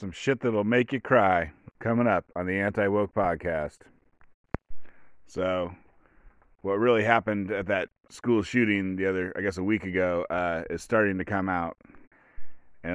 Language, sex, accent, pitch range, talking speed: English, male, American, 95-115 Hz, 160 wpm